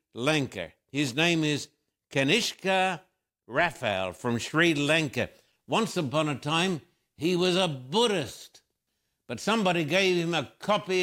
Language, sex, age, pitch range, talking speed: English, male, 60-79, 135-180 Hz, 125 wpm